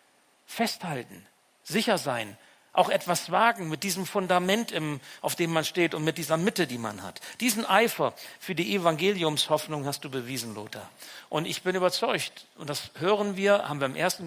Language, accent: German, German